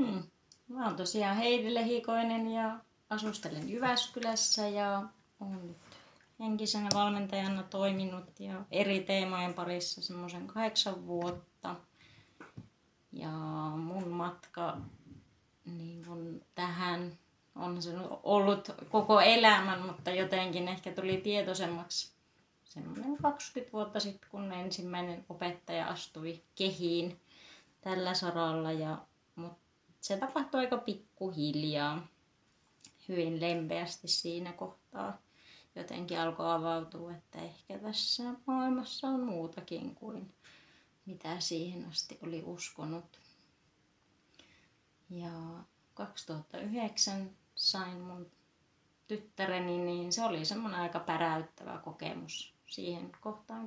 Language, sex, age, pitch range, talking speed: Finnish, female, 20-39, 170-215 Hz, 95 wpm